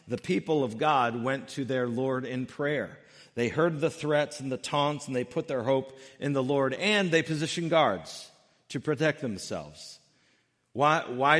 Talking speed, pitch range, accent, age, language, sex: 180 wpm, 125-155 Hz, American, 50-69, English, male